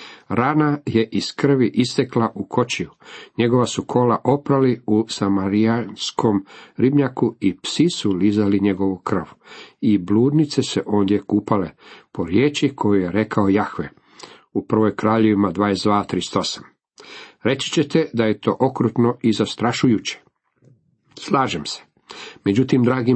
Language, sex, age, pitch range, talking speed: Croatian, male, 50-69, 105-135 Hz, 120 wpm